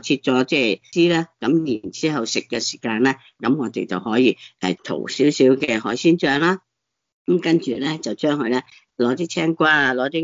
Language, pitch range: Chinese, 120-155 Hz